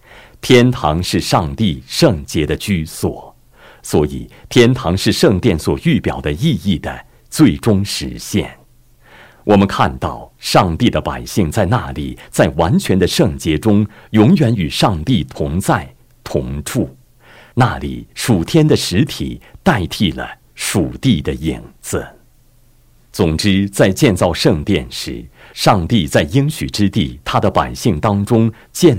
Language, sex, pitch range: Chinese, male, 75-115 Hz